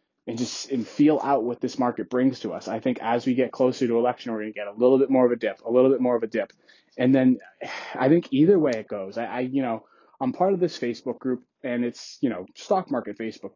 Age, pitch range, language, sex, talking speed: 20-39, 120-165 Hz, English, male, 275 wpm